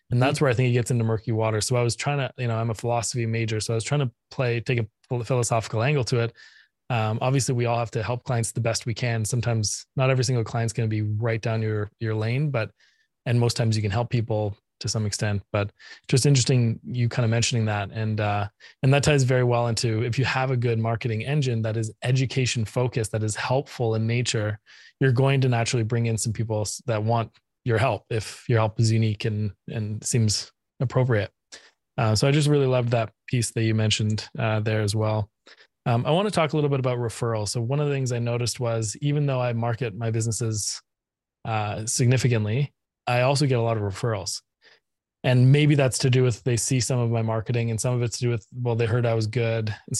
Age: 20-39